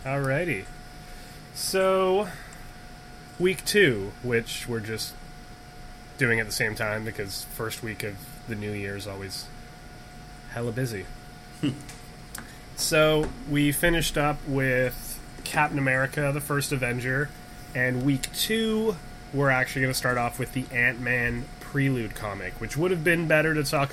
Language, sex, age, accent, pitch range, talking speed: English, male, 20-39, American, 105-145 Hz, 135 wpm